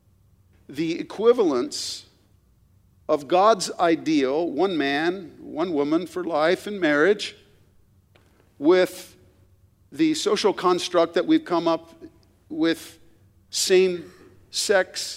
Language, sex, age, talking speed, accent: English, male, 50-69, 90 wpm, American